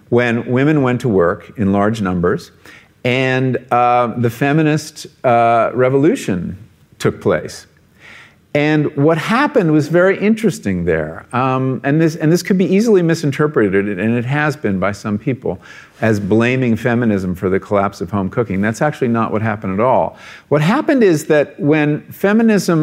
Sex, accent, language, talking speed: male, American, English, 160 wpm